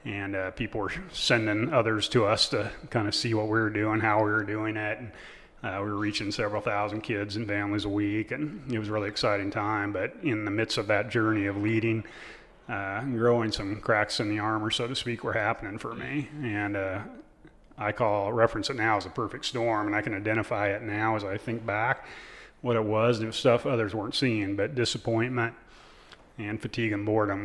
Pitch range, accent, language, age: 105-120 Hz, American, English, 30-49